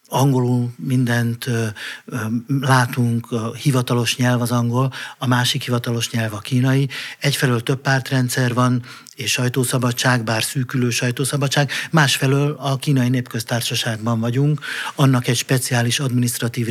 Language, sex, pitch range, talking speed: Hungarian, male, 115-135 Hz, 120 wpm